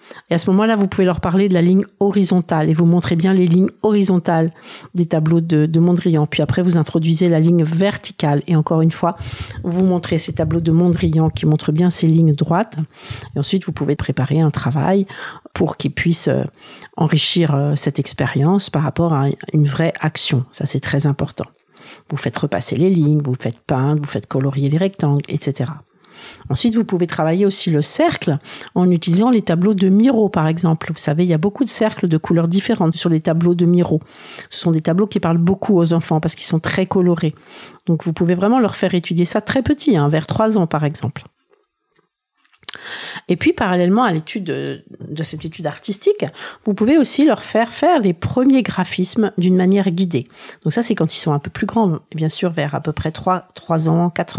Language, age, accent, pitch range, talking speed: French, 50-69, French, 155-195 Hz, 205 wpm